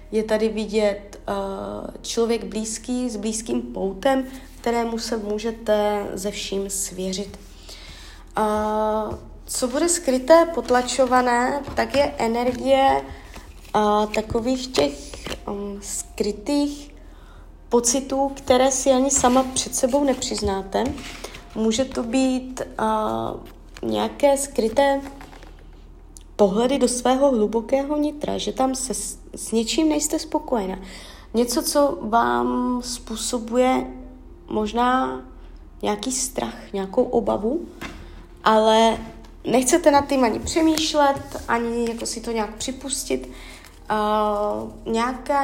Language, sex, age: Czech, female, 30-49